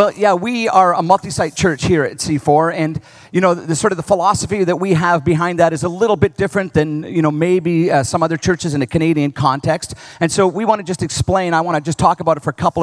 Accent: American